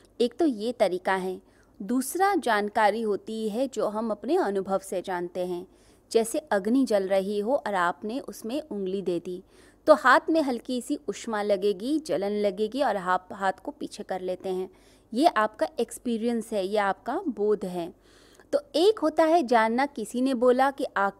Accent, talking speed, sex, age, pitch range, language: native, 175 wpm, female, 20-39, 205-290 Hz, Hindi